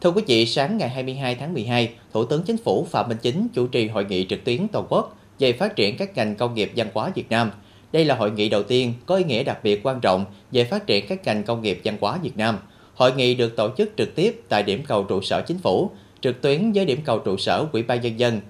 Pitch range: 105-135 Hz